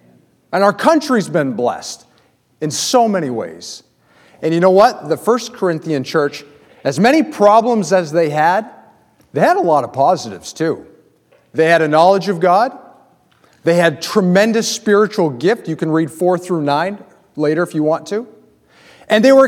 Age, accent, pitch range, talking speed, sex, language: 40-59, American, 150-245 Hz, 170 wpm, male, English